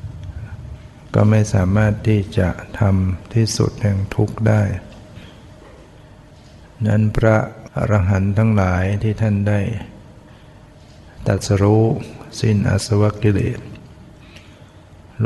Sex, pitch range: male, 100-115 Hz